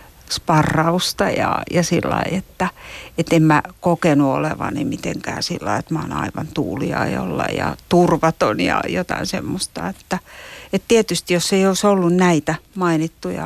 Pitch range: 150-175 Hz